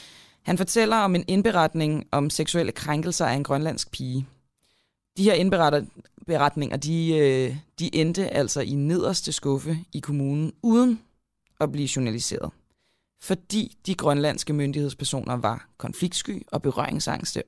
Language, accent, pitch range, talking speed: Danish, native, 135-170 Hz, 125 wpm